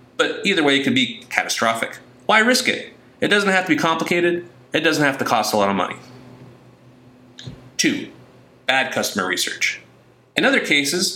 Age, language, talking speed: 30-49, English, 170 wpm